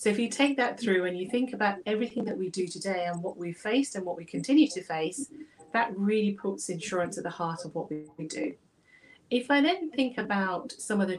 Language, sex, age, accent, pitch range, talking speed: English, female, 40-59, British, 180-230 Hz, 235 wpm